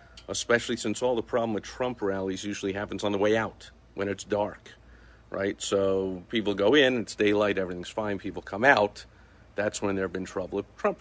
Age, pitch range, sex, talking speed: 50-69, 95-110 Hz, male, 200 wpm